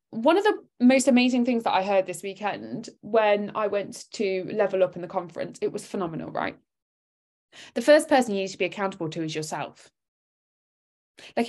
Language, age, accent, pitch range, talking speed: English, 20-39, British, 185-235 Hz, 190 wpm